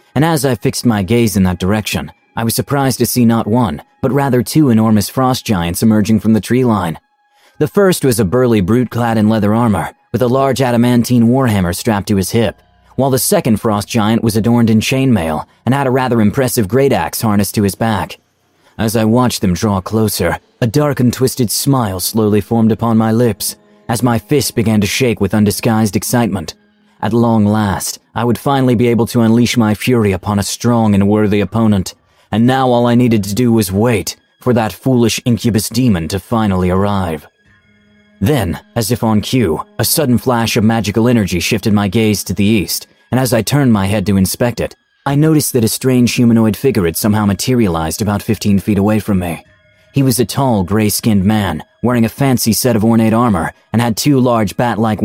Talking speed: 205 wpm